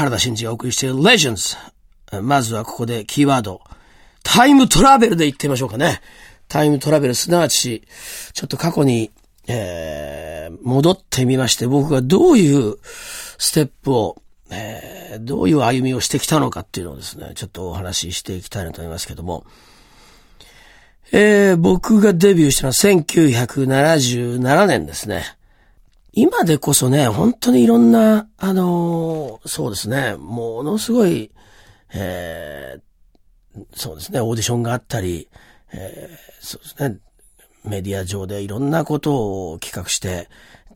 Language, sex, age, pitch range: Japanese, male, 40-59, 110-170 Hz